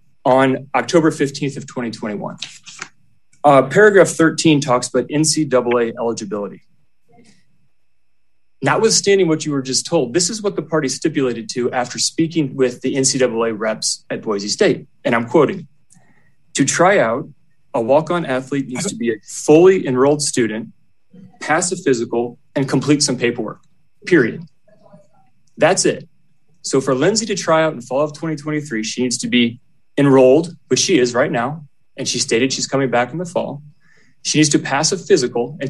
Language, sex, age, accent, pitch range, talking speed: English, male, 30-49, American, 125-160 Hz, 165 wpm